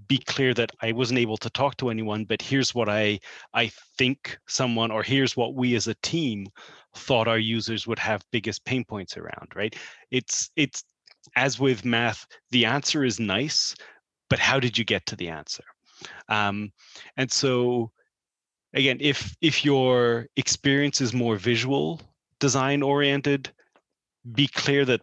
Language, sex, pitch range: English, male, 110-135 Hz